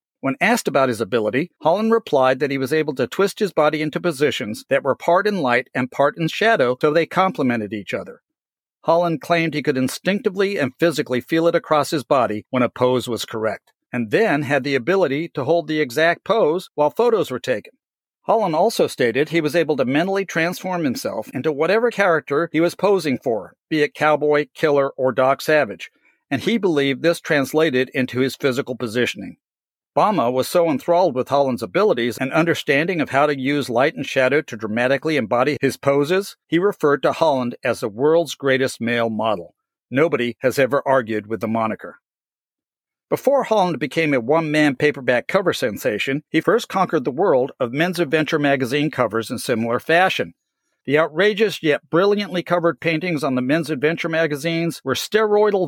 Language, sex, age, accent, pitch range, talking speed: English, male, 50-69, American, 130-170 Hz, 180 wpm